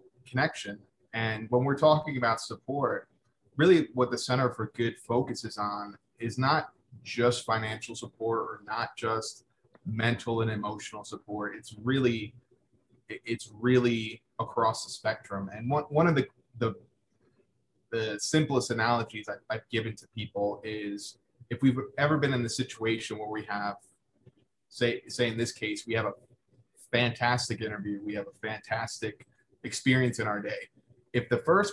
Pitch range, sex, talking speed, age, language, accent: 110-130 Hz, male, 150 wpm, 30-49, English, American